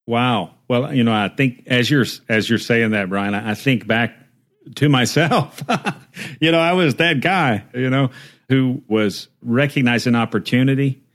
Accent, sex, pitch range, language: American, male, 105-135 Hz, English